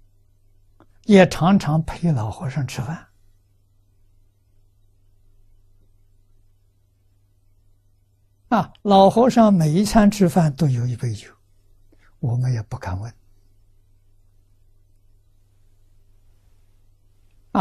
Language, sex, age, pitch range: Chinese, male, 60-79, 100-125 Hz